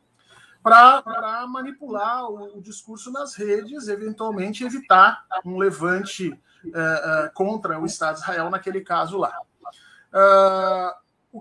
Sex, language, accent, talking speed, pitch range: male, Portuguese, Brazilian, 115 wpm, 180-255 Hz